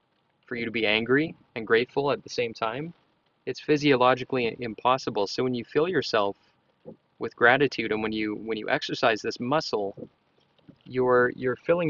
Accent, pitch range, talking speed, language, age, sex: American, 110-135 Hz, 160 wpm, English, 20-39, male